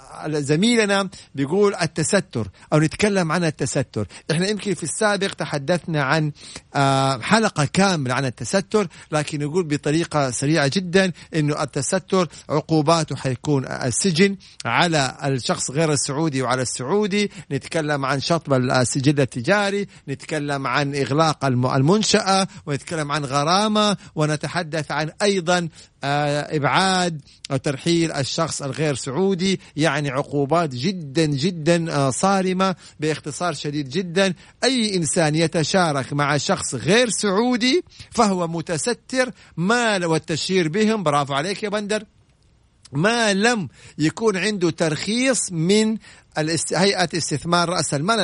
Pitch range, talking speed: 145-190 Hz, 110 wpm